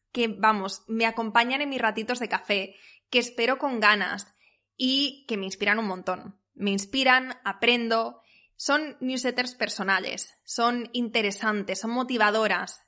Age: 20-39